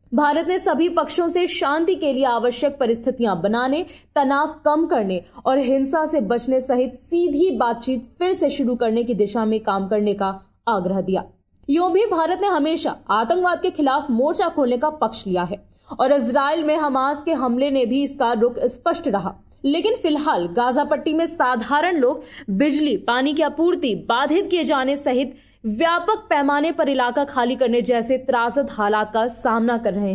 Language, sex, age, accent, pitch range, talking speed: Hindi, female, 20-39, native, 230-305 Hz, 175 wpm